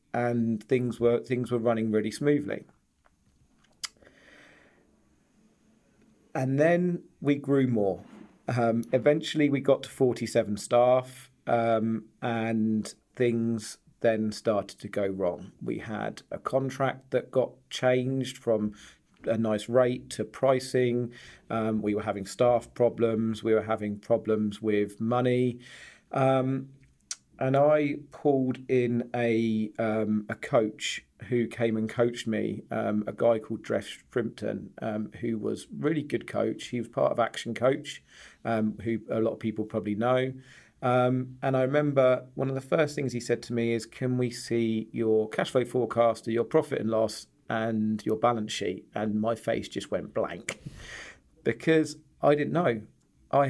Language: English